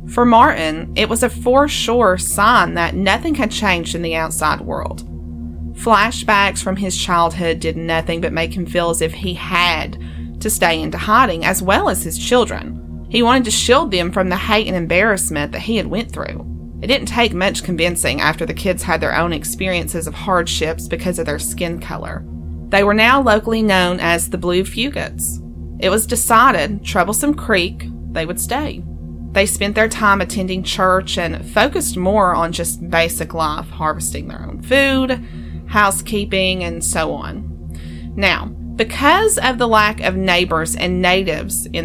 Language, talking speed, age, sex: English, 175 wpm, 30-49, female